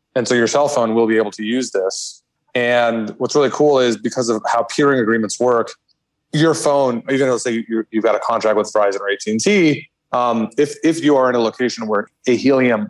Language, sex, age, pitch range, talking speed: English, male, 20-39, 110-125 Hz, 220 wpm